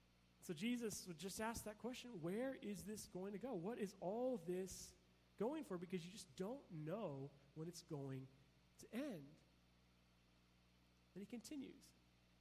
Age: 40-59